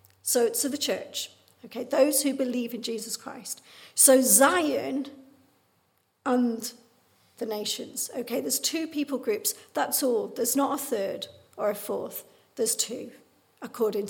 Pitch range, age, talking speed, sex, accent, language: 235-275 Hz, 50-69, 145 wpm, female, British, English